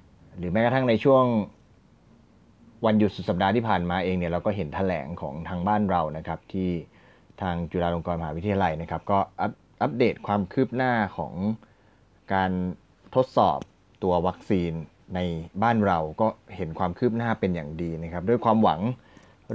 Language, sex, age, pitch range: Thai, male, 20-39, 90-115 Hz